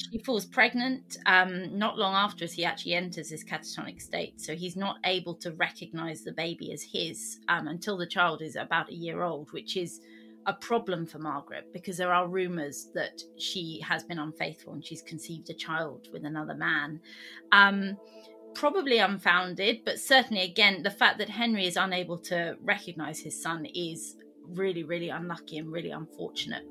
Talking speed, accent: 175 wpm, British